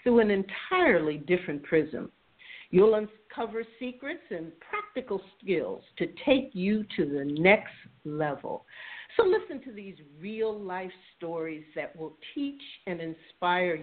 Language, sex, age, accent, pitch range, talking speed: English, female, 50-69, American, 165-225 Hz, 125 wpm